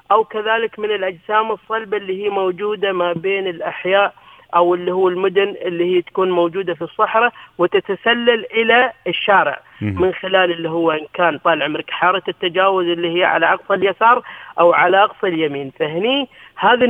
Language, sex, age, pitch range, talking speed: Arabic, female, 40-59, 175-220 Hz, 155 wpm